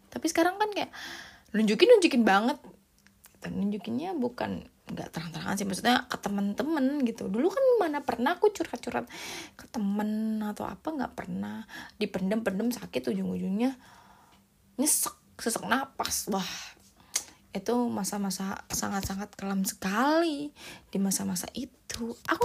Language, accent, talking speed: Indonesian, native, 120 wpm